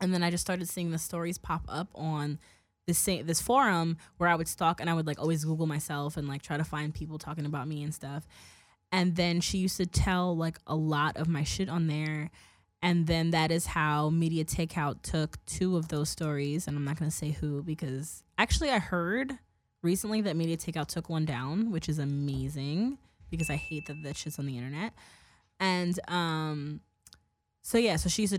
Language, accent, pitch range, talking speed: English, American, 150-175 Hz, 205 wpm